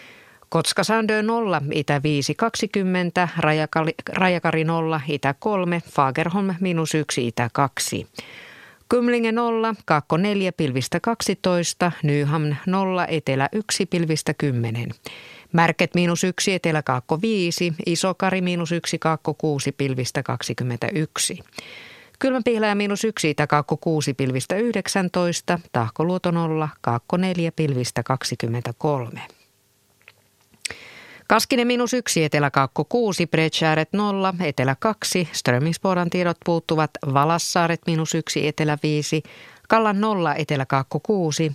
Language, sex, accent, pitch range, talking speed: Finnish, female, native, 145-185 Hz, 110 wpm